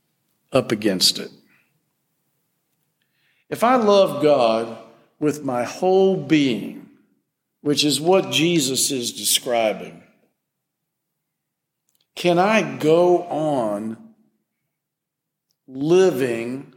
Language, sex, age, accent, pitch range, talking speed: English, male, 50-69, American, 125-165 Hz, 80 wpm